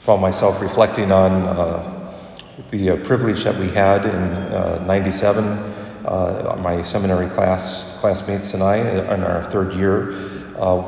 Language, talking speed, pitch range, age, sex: English, 145 wpm, 90-100 Hz, 40-59, male